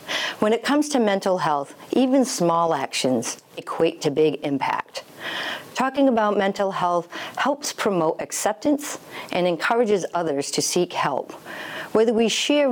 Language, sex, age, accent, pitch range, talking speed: English, female, 50-69, American, 155-210 Hz, 135 wpm